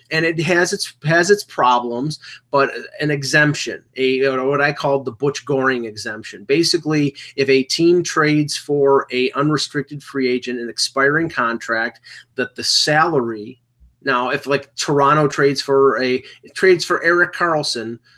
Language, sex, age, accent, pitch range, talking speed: English, male, 30-49, American, 125-150 Hz, 150 wpm